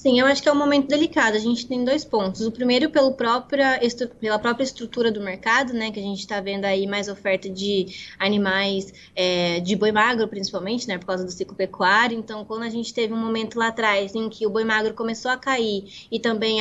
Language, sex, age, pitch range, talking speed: Portuguese, female, 20-39, 205-240 Hz, 230 wpm